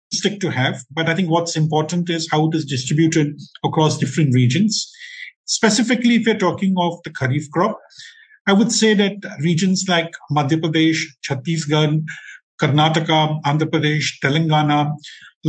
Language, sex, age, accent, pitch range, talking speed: English, male, 50-69, Indian, 150-185 Hz, 145 wpm